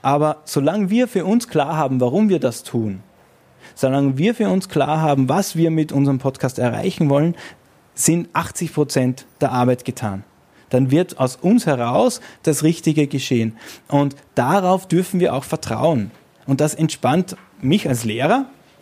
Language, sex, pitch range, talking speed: German, male, 125-175 Hz, 160 wpm